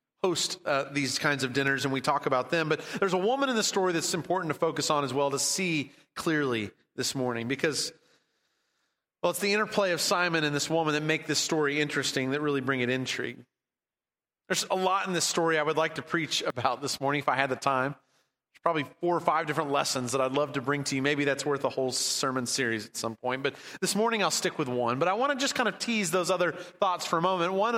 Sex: male